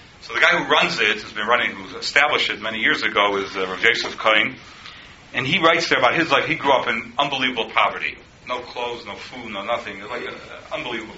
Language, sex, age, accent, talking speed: English, male, 40-59, American, 240 wpm